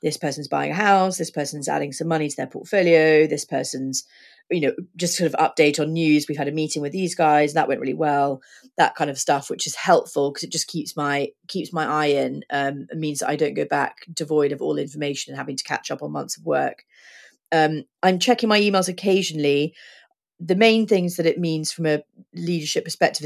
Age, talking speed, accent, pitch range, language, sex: 30-49, 225 wpm, British, 145-165 Hz, English, female